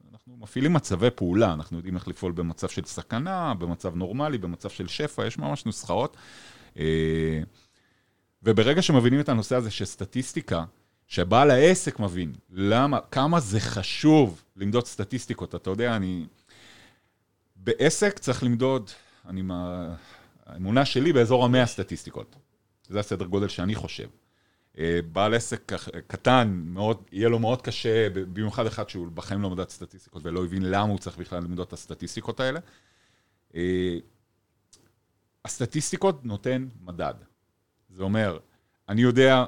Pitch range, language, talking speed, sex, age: 95-125 Hz, Hebrew, 130 wpm, male, 40-59